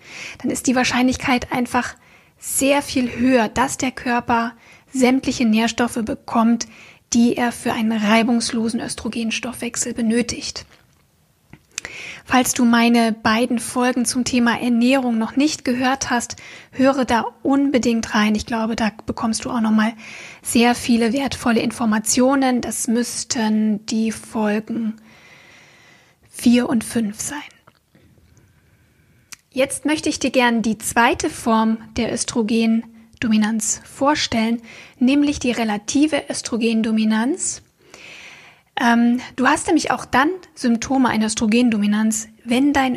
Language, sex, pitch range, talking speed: German, female, 225-260 Hz, 115 wpm